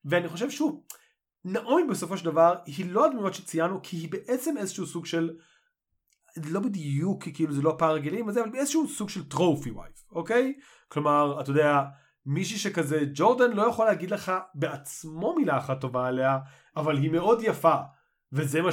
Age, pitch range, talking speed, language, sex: 30-49, 145-190 Hz, 175 wpm, Hebrew, male